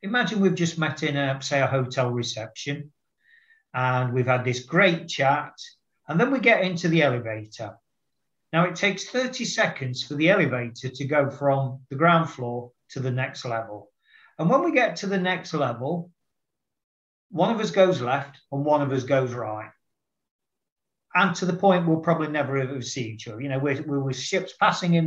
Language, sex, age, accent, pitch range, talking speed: English, male, 40-59, British, 130-175 Hz, 190 wpm